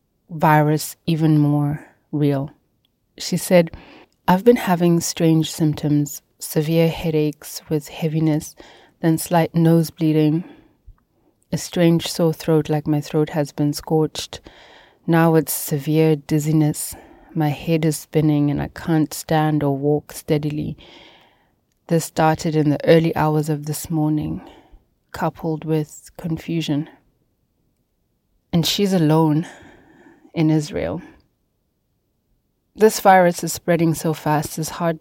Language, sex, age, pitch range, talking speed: English, female, 30-49, 150-165 Hz, 120 wpm